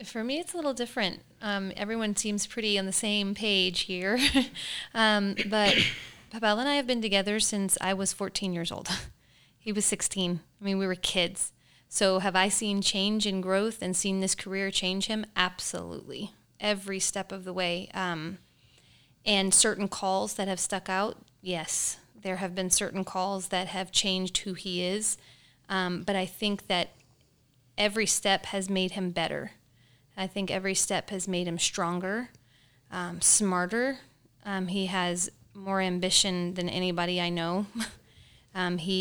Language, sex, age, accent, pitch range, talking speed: English, female, 30-49, American, 180-205 Hz, 165 wpm